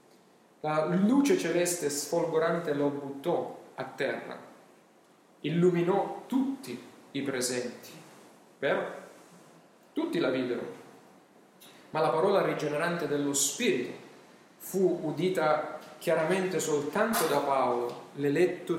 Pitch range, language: 145-190 Hz, Italian